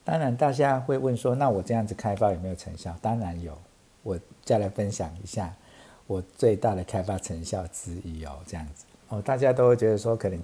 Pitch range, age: 90-120 Hz, 50-69